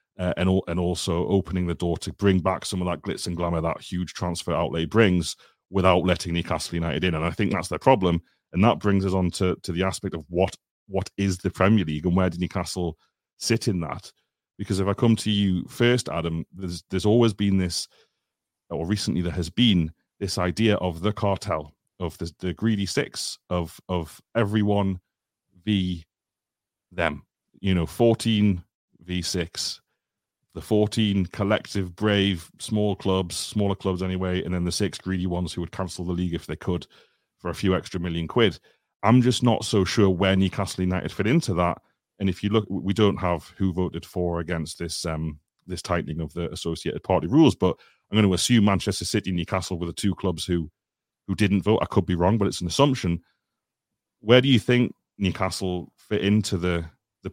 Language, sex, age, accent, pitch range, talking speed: English, male, 40-59, British, 85-100 Hz, 195 wpm